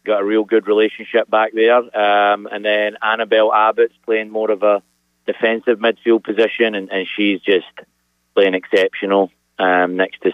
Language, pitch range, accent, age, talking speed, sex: English, 90-115 Hz, British, 30-49, 165 wpm, male